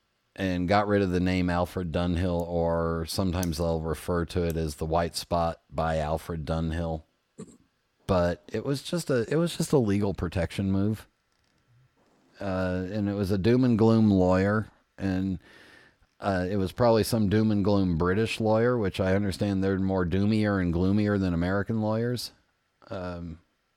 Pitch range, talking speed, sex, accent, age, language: 90-110 Hz, 165 wpm, male, American, 40-59, English